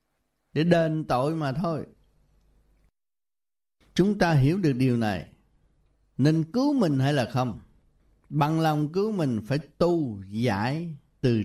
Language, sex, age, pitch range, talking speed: Vietnamese, male, 60-79, 115-160 Hz, 130 wpm